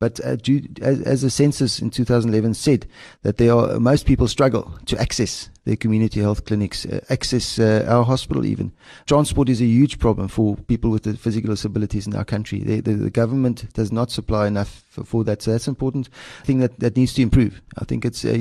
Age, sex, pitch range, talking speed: 30-49, male, 110-125 Hz, 220 wpm